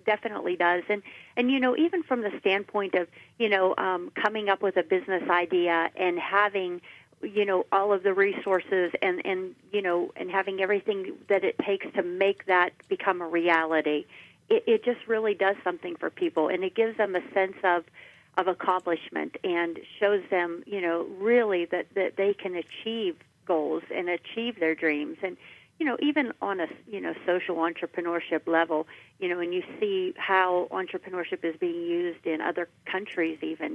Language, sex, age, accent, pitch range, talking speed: English, female, 50-69, American, 170-210 Hz, 180 wpm